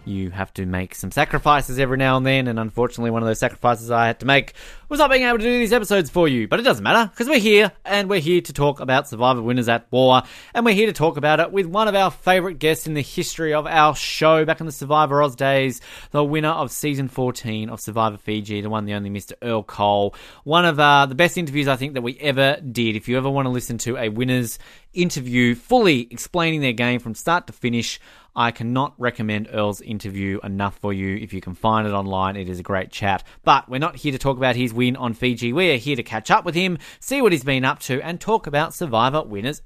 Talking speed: 250 wpm